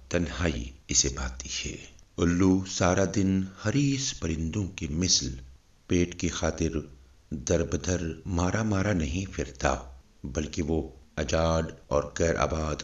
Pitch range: 75-95 Hz